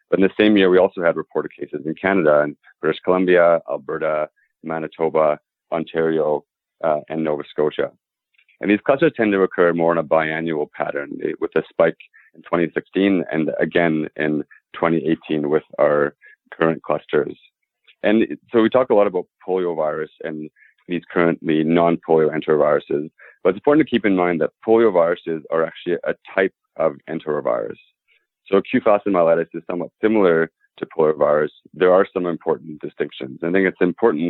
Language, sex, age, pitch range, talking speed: English, male, 30-49, 80-100 Hz, 165 wpm